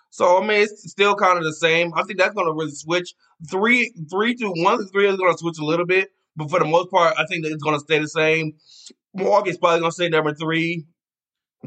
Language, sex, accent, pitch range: English, male, American, 150-175 Hz